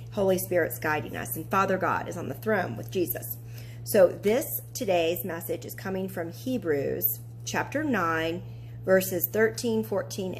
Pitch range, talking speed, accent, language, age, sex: 150-185 Hz, 150 wpm, American, English, 40-59, female